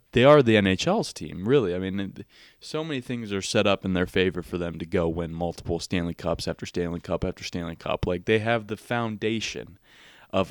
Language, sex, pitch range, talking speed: English, male, 90-110 Hz, 210 wpm